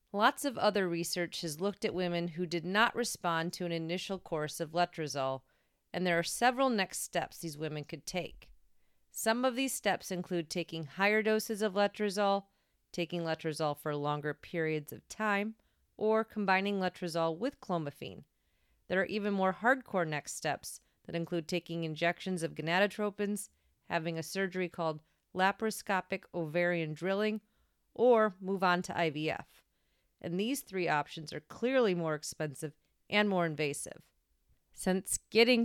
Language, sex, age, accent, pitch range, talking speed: English, female, 40-59, American, 160-200 Hz, 150 wpm